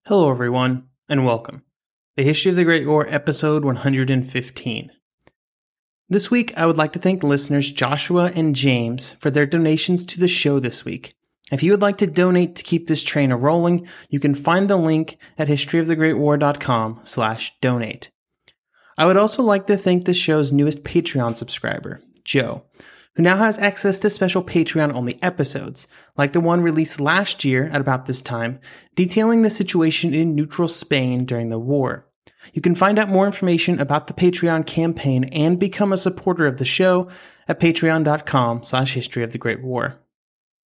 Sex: male